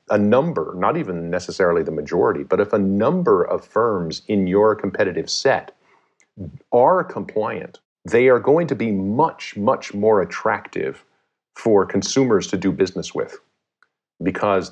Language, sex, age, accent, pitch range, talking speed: English, male, 40-59, American, 95-110 Hz, 145 wpm